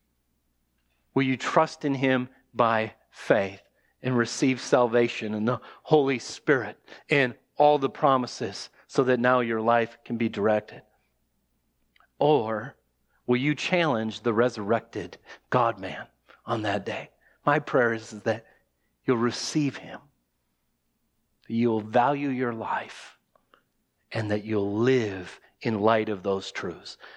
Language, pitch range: English, 110-140 Hz